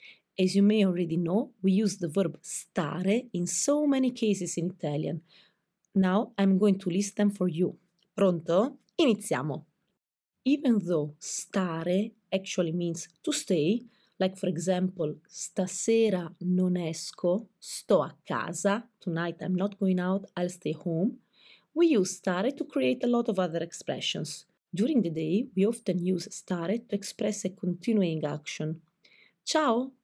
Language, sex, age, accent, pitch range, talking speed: Italian, female, 30-49, native, 170-210 Hz, 145 wpm